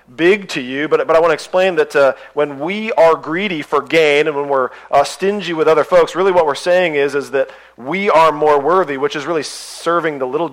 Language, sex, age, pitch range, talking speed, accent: English, male, 40-59, 135-185 Hz, 240 wpm, American